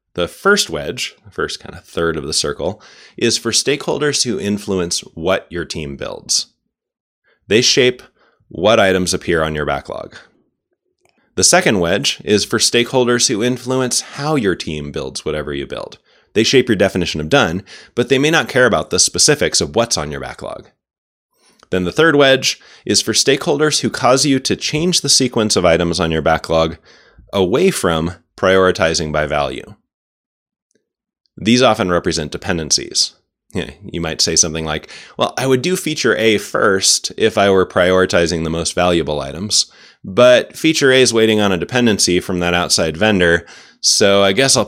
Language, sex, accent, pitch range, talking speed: English, male, American, 80-125 Hz, 170 wpm